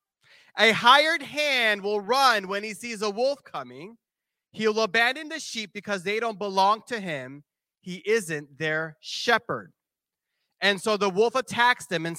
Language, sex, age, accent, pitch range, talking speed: English, male, 30-49, American, 185-245 Hz, 160 wpm